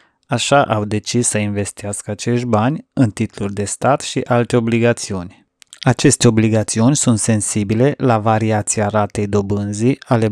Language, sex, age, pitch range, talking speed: Romanian, male, 20-39, 105-120 Hz, 135 wpm